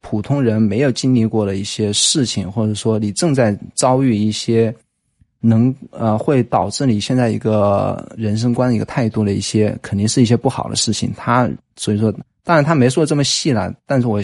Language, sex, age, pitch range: Chinese, male, 20-39, 105-125 Hz